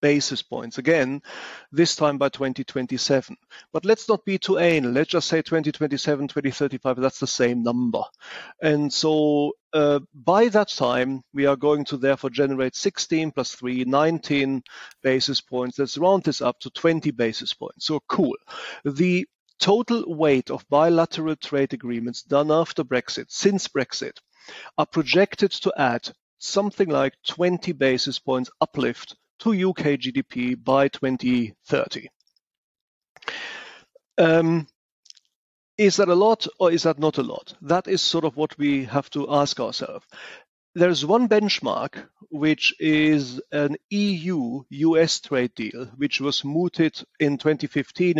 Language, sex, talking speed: English, male, 140 wpm